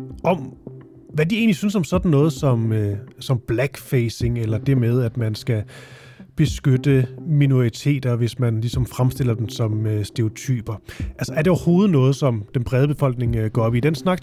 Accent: native